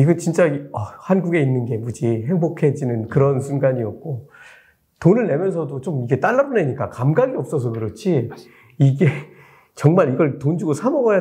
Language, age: Korean, 40-59